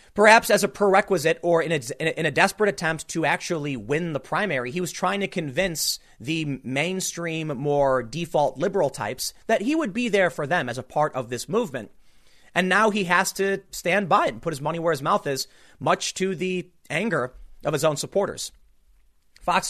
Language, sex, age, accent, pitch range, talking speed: English, male, 30-49, American, 145-190 Hz, 195 wpm